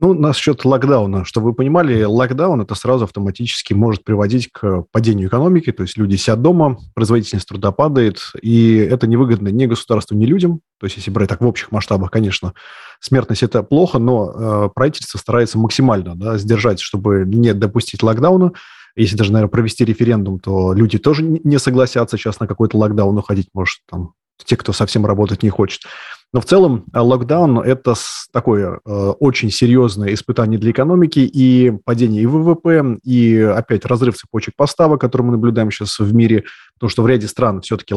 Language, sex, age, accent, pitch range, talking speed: Russian, male, 20-39, native, 105-125 Hz, 175 wpm